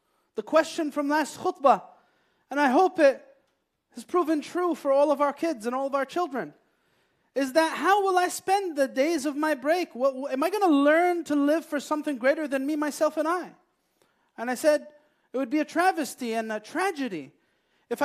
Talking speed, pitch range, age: 200 wpm, 275-345 Hz, 30-49